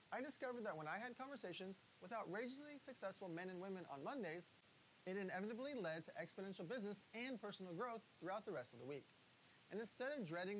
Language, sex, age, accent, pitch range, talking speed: English, male, 30-49, American, 170-225 Hz, 190 wpm